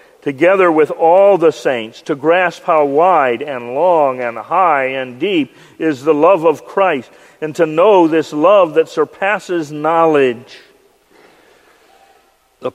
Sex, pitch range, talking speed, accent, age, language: male, 160-250 Hz, 135 wpm, American, 50-69, English